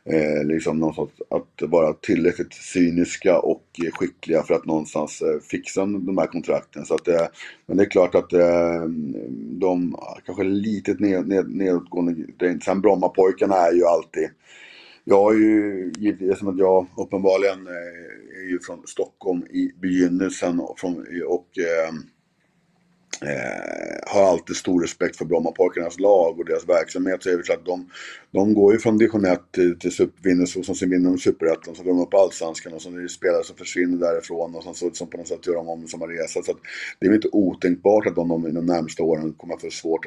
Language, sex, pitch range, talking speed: Swedish, male, 85-100 Hz, 185 wpm